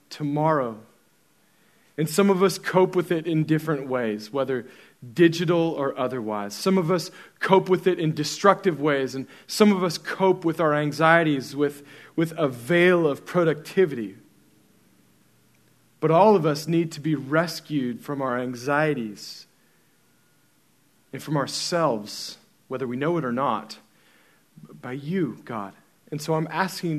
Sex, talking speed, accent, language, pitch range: male, 145 wpm, American, English, 130-165 Hz